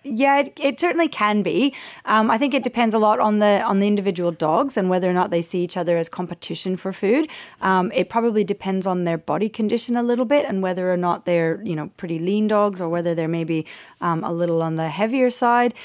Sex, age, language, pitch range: female, 30-49, English, 170-215 Hz